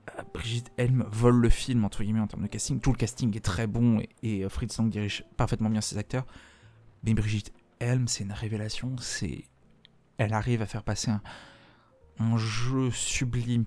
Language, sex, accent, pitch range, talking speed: French, male, French, 105-120 Hz, 180 wpm